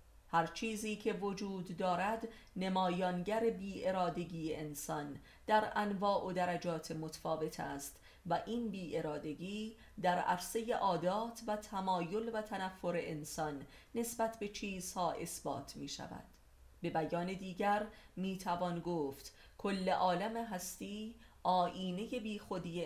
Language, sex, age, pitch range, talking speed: Persian, female, 30-49, 160-205 Hz, 115 wpm